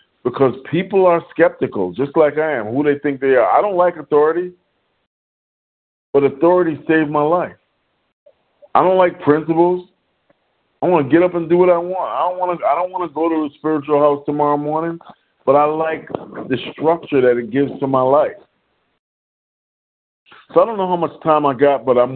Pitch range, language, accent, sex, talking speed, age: 125-160 Hz, English, American, male, 190 wpm, 50-69